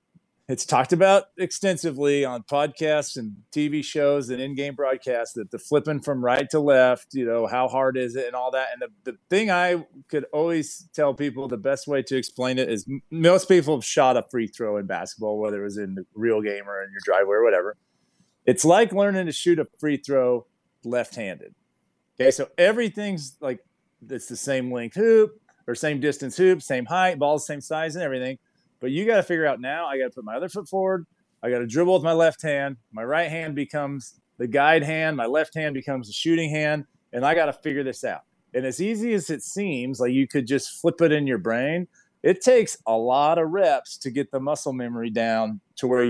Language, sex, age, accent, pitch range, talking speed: English, male, 30-49, American, 130-170 Hz, 220 wpm